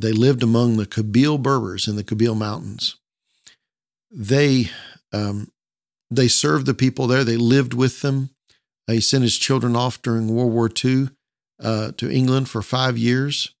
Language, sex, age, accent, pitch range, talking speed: English, male, 50-69, American, 110-130 Hz, 160 wpm